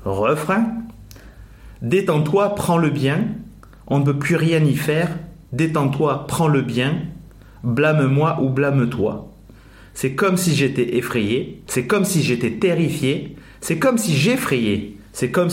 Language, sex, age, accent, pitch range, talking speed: French, male, 30-49, French, 115-160 Hz, 135 wpm